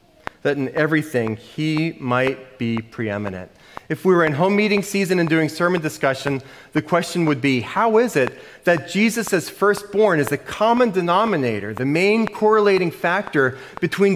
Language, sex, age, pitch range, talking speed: English, male, 30-49, 175-235 Hz, 160 wpm